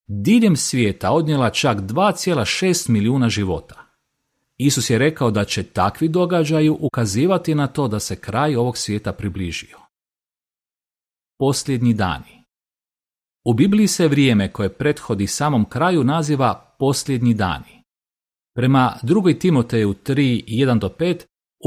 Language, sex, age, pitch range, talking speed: Croatian, male, 40-59, 105-155 Hz, 110 wpm